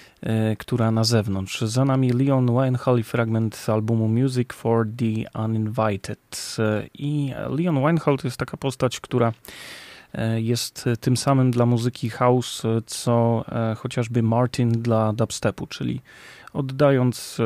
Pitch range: 110-130 Hz